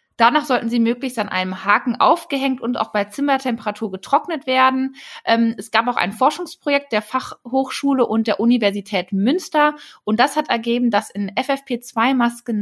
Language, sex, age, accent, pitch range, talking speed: German, female, 20-39, German, 205-255 Hz, 150 wpm